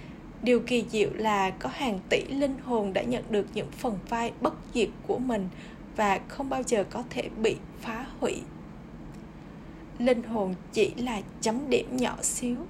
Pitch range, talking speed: 210-255 Hz, 170 wpm